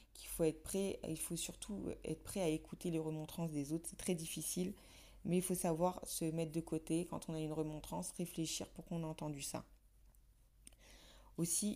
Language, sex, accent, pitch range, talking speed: French, female, French, 155-180 Hz, 195 wpm